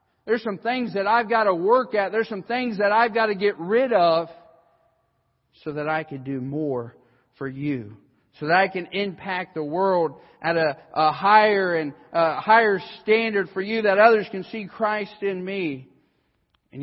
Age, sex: 50-69, male